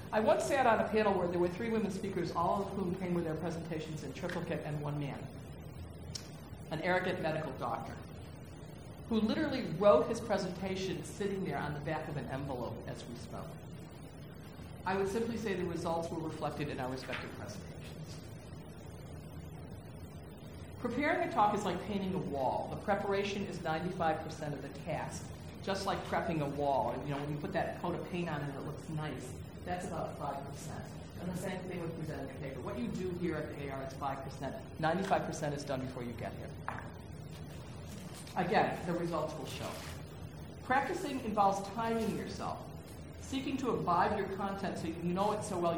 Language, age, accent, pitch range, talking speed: English, 50-69, American, 150-195 Hz, 180 wpm